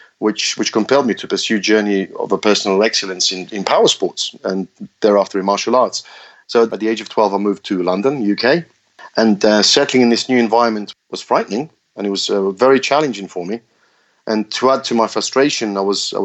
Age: 30-49